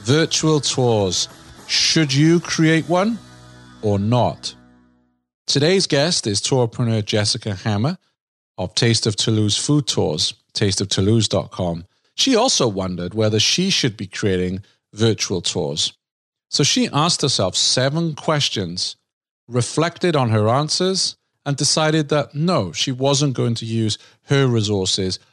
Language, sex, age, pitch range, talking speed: English, male, 40-59, 105-145 Hz, 125 wpm